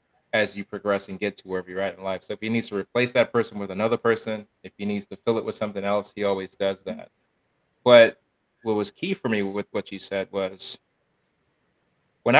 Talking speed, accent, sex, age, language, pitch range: 225 wpm, American, male, 30-49, English, 100-115 Hz